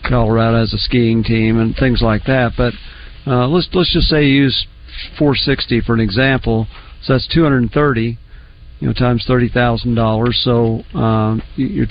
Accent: American